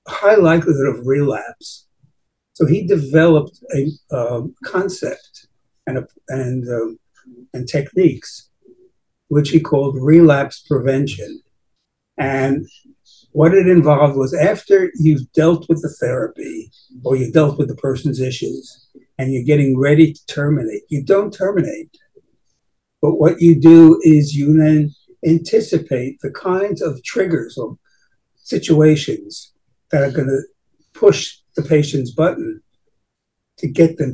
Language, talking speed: English, 130 wpm